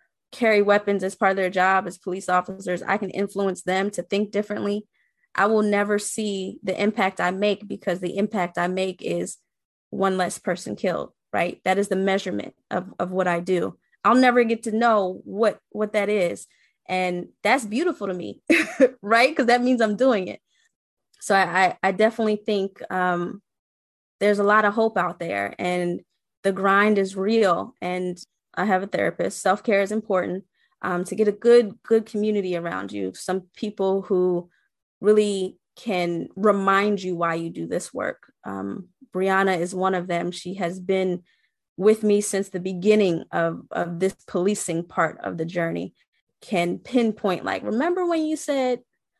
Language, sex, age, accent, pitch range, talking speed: English, female, 20-39, American, 180-215 Hz, 175 wpm